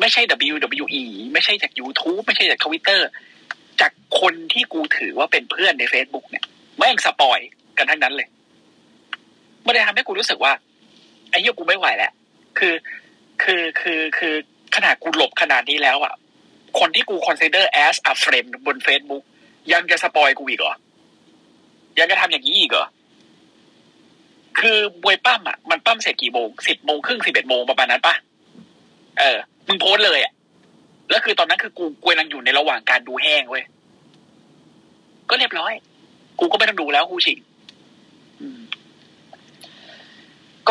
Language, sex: Thai, male